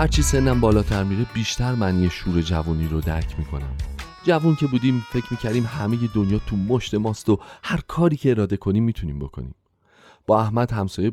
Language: Persian